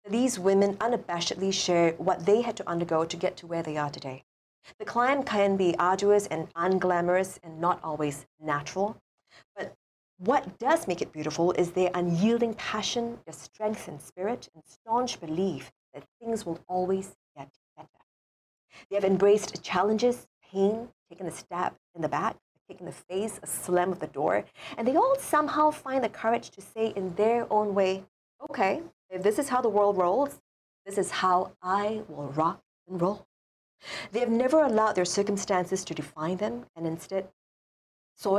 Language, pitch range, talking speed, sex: English, 170-220 Hz, 170 wpm, female